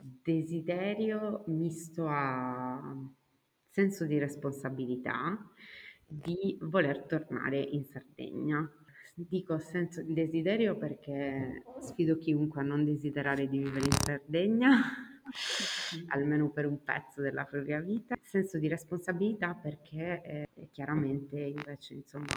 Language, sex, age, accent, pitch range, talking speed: Italian, female, 30-49, native, 140-170 Hz, 100 wpm